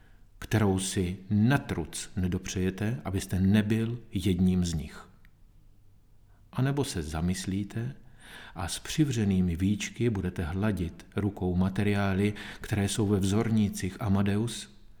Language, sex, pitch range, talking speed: Czech, male, 95-110 Hz, 105 wpm